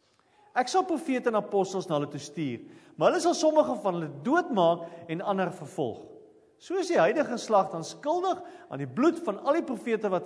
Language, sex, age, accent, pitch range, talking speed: English, male, 40-59, Dutch, 155-260 Hz, 200 wpm